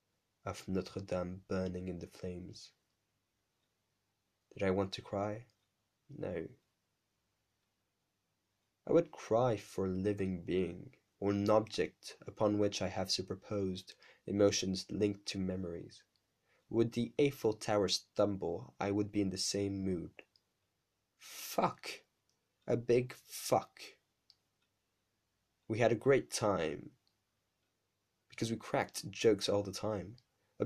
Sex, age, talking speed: male, 20-39, 115 wpm